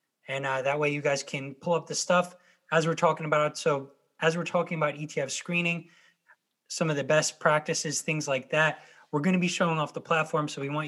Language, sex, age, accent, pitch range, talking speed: English, male, 20-39, American, 150-170 Hz, 225 wpm